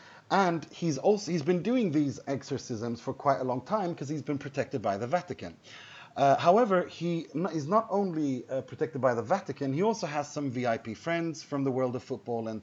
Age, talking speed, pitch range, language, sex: 30-49, 205 wpm, 125-160 Hz, English, male